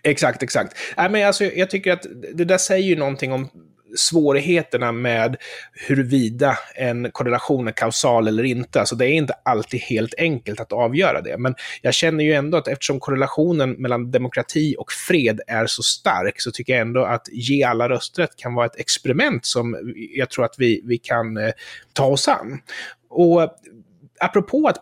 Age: 30-49